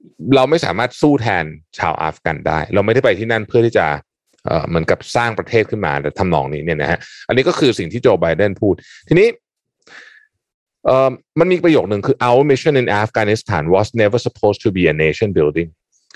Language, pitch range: Thai, 100-135 Hz